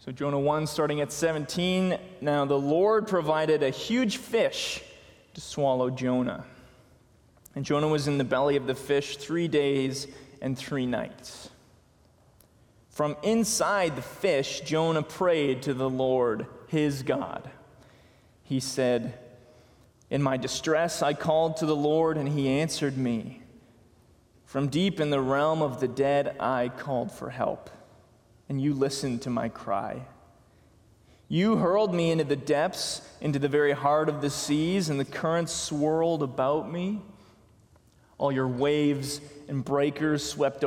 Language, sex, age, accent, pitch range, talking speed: English, male, 20-39, American, 130-160 Hz, 145 wpm